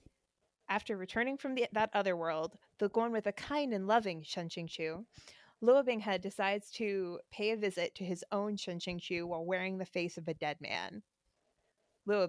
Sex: female